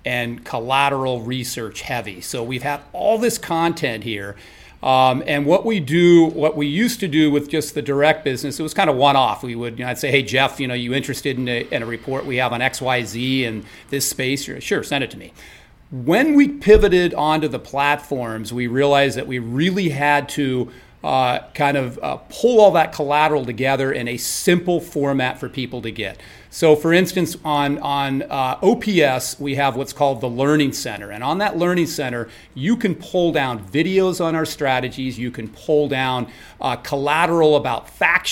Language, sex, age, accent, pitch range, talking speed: English, male, 40-59, American, 125-155 Hz, 195 wpm